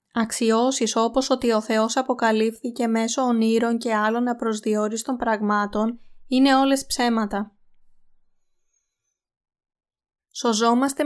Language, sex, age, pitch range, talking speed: Greek, female, 20-39, 220-250 Hz, 85 wpm